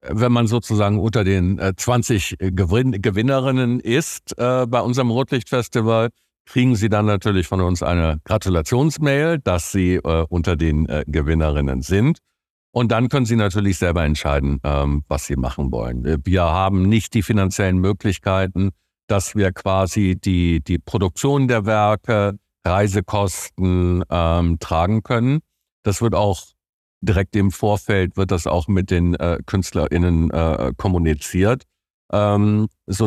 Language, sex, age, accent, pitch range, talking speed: German, male, 50-69, German, 90-110 Hz, 140 wpm